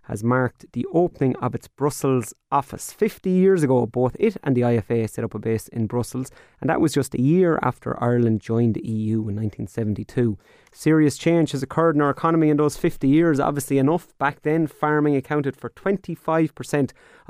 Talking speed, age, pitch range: 185 wpm, 30-49, 115-140 Hz